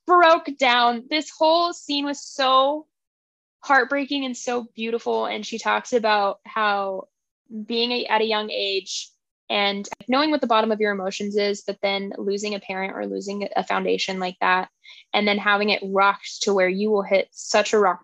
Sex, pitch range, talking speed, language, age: female, 195-250 Hz, 180 wpm, English, 10-29